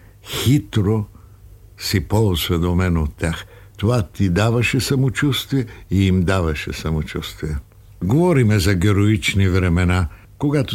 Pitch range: 90-115 Hz